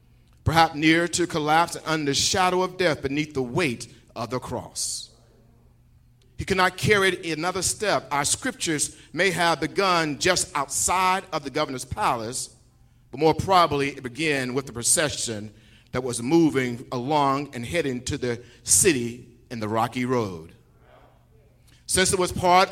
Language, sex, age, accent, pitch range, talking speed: English, male, 50-69, American, 125-180 Hz, 155 wpm